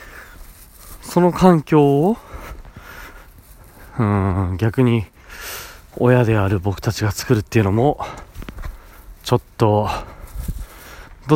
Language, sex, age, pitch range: Japanese, male, 30-49, 95-125 Hz